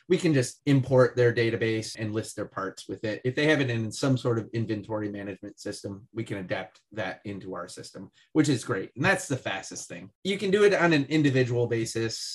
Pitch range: 110-135 Hz